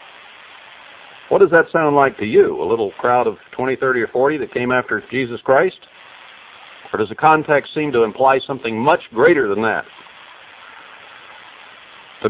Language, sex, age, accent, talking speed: English, male, 60-79, American, 160 wpm